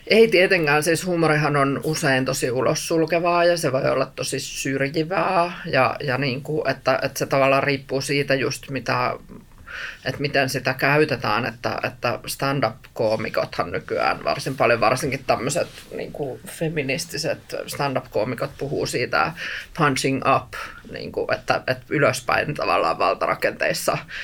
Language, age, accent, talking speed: Finnish, 20-39, native, 130 wpm